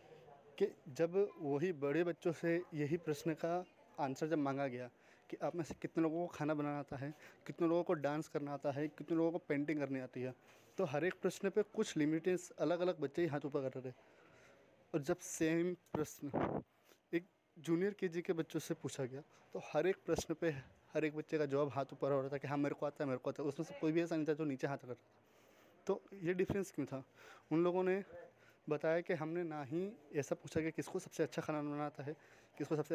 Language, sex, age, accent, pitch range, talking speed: Hindi, male, 20-39, native, 145-175 Hz, 230 wpm